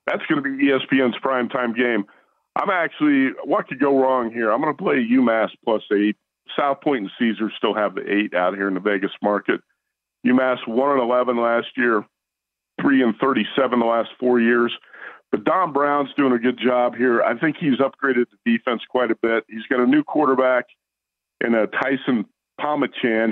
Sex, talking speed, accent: male, 190 wpm, American